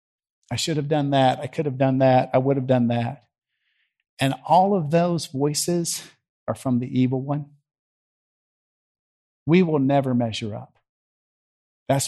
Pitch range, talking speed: 130-170 Hz, 155 wpm